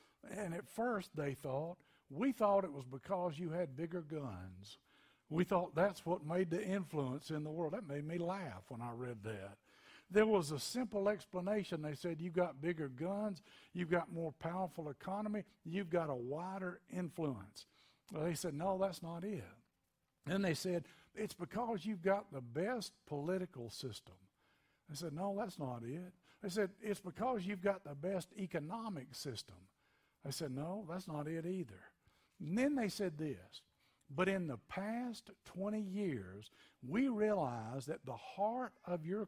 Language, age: English, 60-79